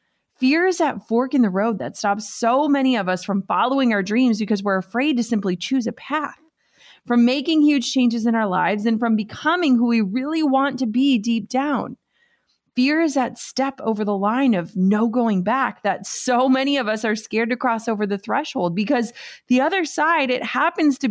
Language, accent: English, American